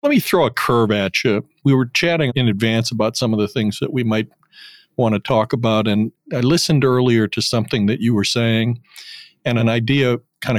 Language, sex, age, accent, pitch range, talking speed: English, male, 50-69, American, 110-135 Hz, 215 wpm